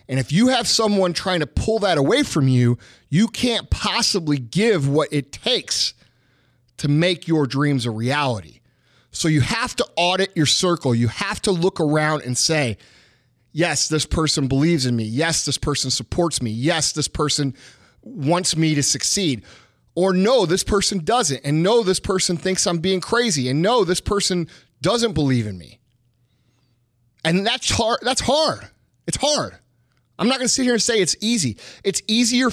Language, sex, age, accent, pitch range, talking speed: English, male, 30-49, American, 125-185 Hz, 180 wpm